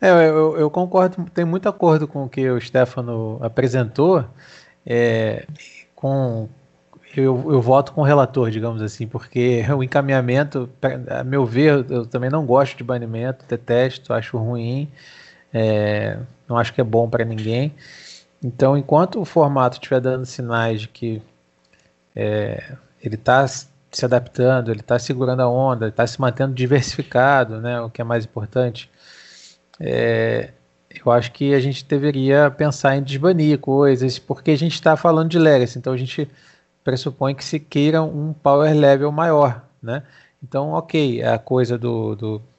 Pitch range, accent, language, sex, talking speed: 115-145 Hz, Brazilian, Portuguese, male, 150 wpm